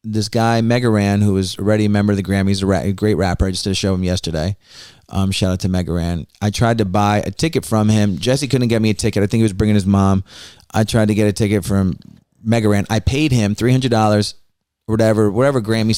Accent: American